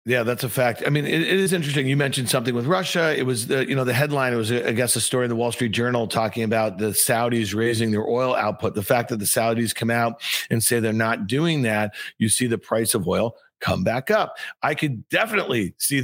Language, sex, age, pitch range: English, male, 50-69, 115-140 Hz